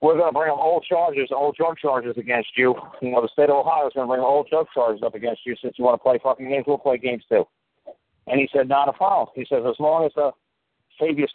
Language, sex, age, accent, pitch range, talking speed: English, male, 50-69, American, 135-180 Hz, 275 wpm